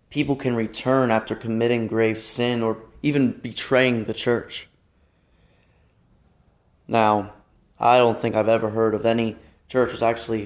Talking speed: 140 wpm